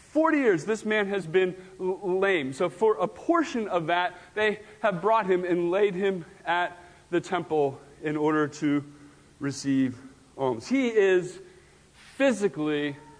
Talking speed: 140 wpm